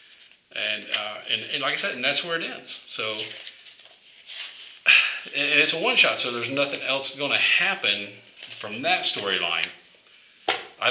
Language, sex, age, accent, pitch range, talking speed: English, male, 40-59, American, 105-155 Hz, 155 wpm